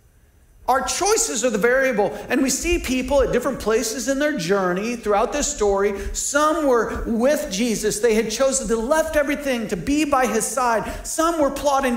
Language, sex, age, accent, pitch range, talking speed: English, male, 40-59, American, 215-275 Hz, 180 wpm